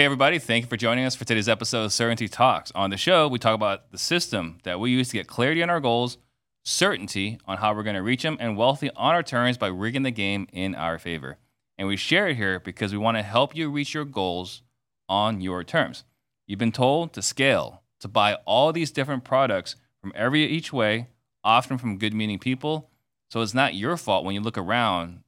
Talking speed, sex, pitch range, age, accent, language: 230 wpm, male, 105-130 Hz, 30-49, American, English